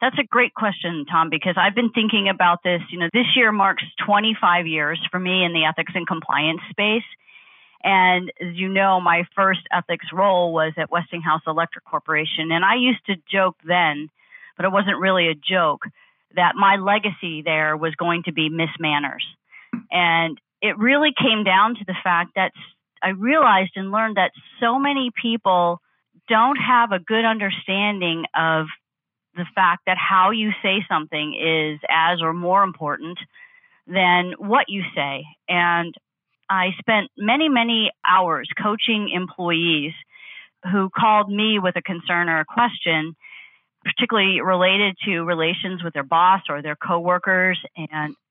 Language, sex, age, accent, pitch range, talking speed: English, female, 40-59, American, 170-210 Hz, 160 wpm